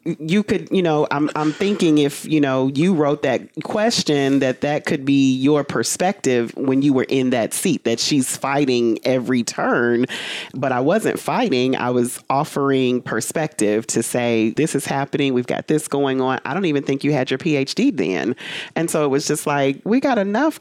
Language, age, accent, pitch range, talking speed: English, 40-59, American, 115-150 Hz, 195 wpm